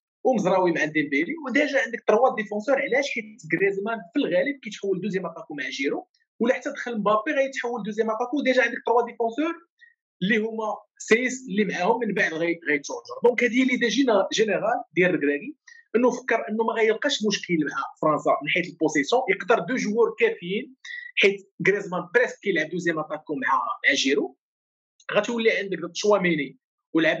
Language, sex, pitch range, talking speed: Arabic, male, 185-275 Hz, 165 wpm